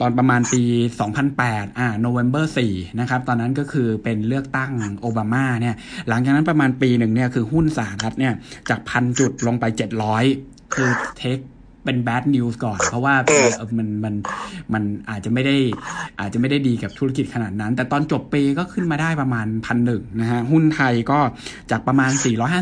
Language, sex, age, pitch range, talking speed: English, male, 60-79, 115-140 Hz, 40 wpm